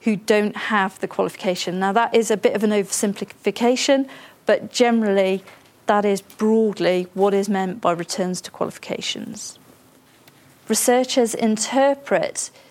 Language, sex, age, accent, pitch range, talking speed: English, female, 40-59, British, 200-240 Hz, 125 wpm